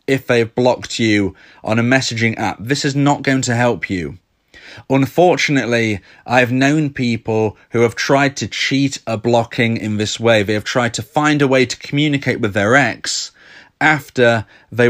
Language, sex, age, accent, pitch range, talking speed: English, male, 30-49, British, 110-135 Hz, 175 wpm